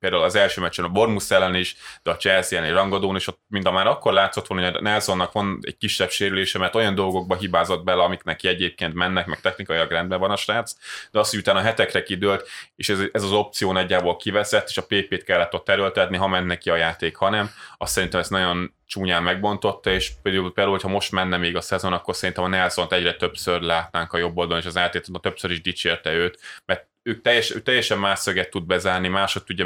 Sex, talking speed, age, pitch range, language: male, 215 wpm, 20-39, 90-95 Hz, Hungarian